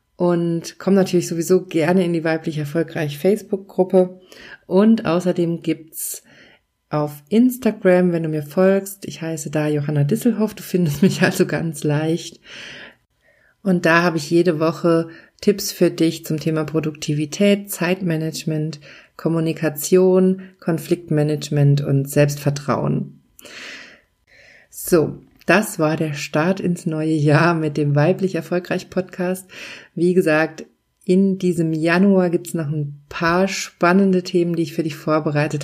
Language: German